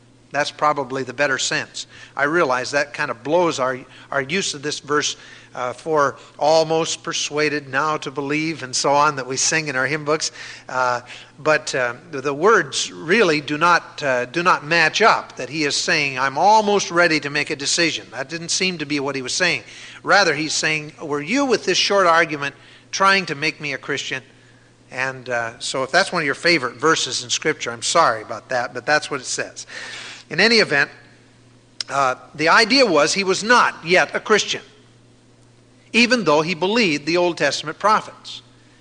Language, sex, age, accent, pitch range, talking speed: English, male, 50-69, American, 130-185 Hz, 190 wpm